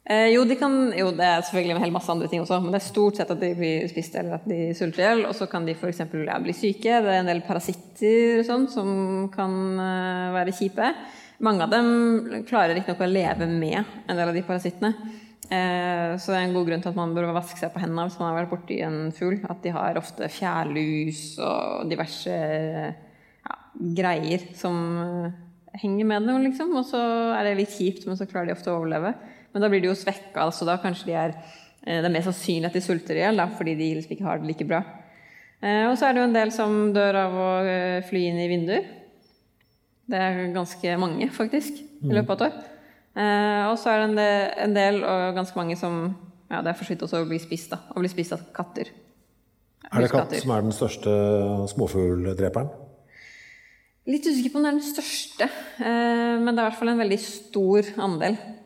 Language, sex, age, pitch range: English, female, 20-39, 170-210 Hz